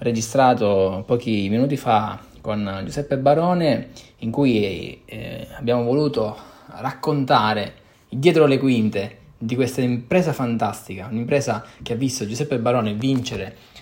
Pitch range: 115-150 Hz